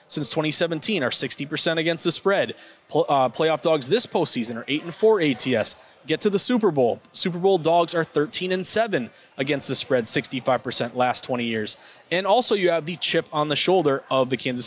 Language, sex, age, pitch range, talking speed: English, male, 20-39, 135-165 Hz, 180 wpm